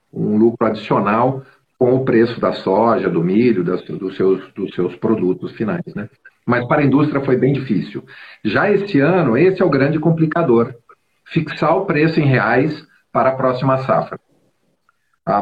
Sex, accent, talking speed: male, Brazilian, 155 wpm